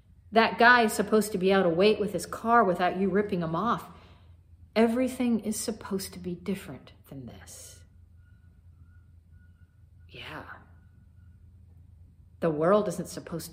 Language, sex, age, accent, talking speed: English, female, 50-69, American, 135 wpm